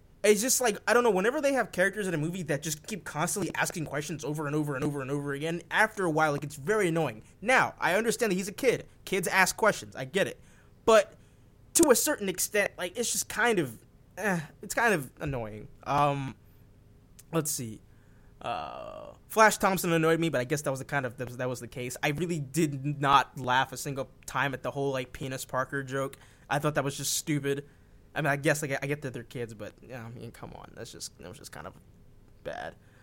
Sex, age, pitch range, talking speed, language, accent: male, 20-39, 130-190 Hz, 235 wpm, English, American